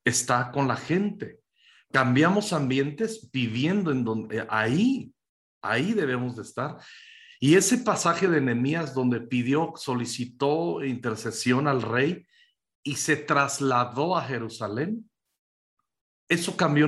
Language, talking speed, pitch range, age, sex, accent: Spanish, 115 wpm, 125-175 Hz, 50-69, male, Mexican